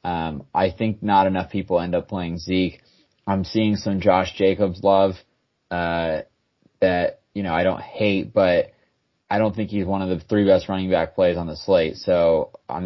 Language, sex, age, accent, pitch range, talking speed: English, male, 20-39, American, 85-100 Hz, 190 wpm